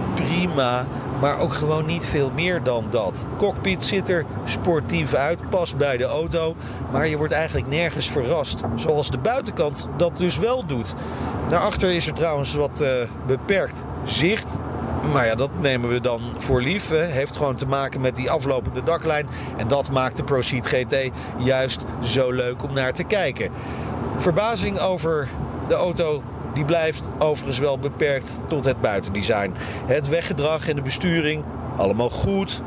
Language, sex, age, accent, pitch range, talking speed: Dutch, male, 40-59, Dutch, 125-165 Hz, 160 wpm